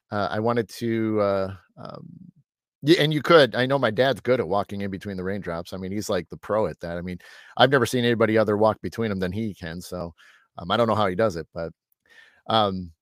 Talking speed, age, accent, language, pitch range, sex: 245 wpm, 30-49, American, English, 110-160 Hz, male